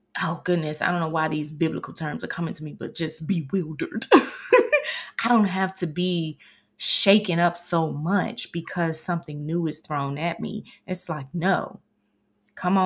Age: 20-39